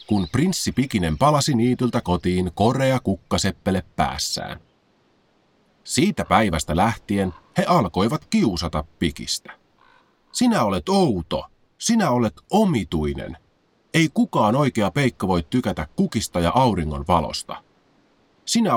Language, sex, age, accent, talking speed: Finnish, male, 30-49, native, 105 wpm